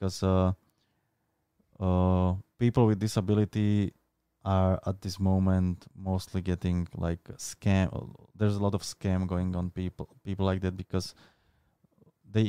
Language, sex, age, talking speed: Slovak, male, 20-39, 135 wpm